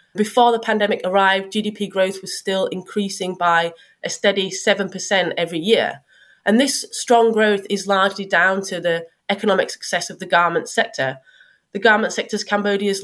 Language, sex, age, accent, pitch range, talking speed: English, female, 30-49, British, 175-215 Hz, 160 wpm